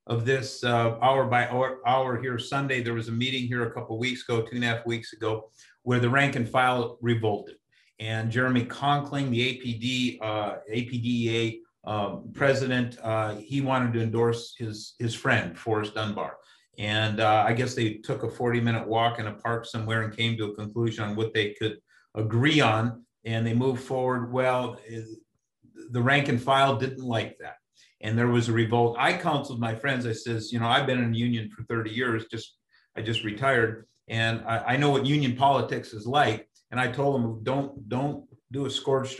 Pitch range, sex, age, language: 115-130 Hz, male, 50-69, English